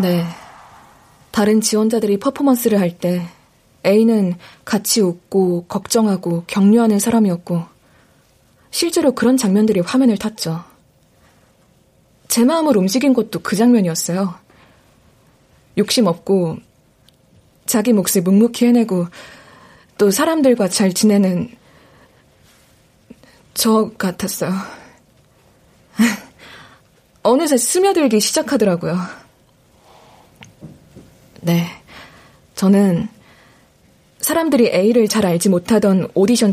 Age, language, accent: 20-39, Korean, native